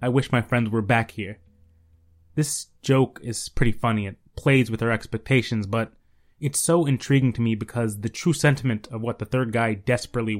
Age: 20-39